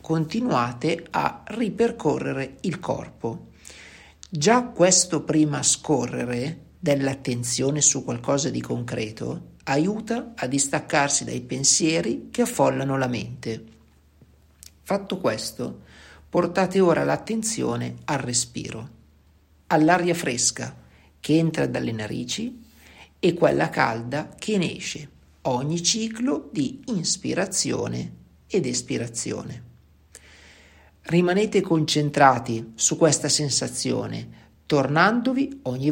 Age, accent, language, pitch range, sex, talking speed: 50-69, native, Italian, 115-175 Hz, male, 90 wpm